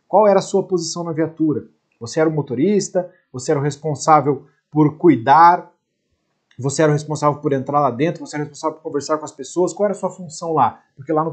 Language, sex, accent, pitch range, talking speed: Portuguese, male, Brazilian, 145-185 Hz, 230 wpm